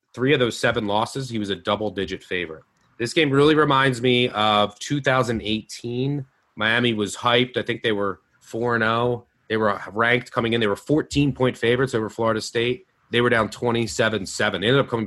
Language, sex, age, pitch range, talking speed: English, male, 30-49, 105-135 Hz, 185 wpm